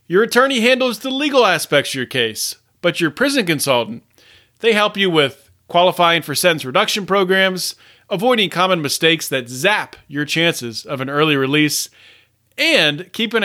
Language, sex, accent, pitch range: English, male, American, 135-180 Hz